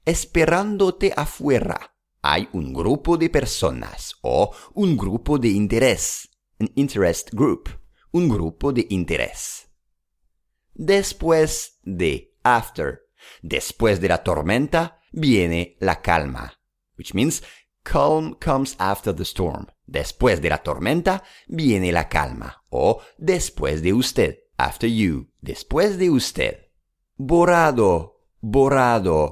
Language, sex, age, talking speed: English, male, 50-69, 110 wpm